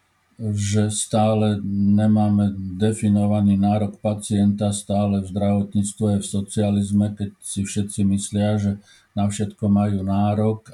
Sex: male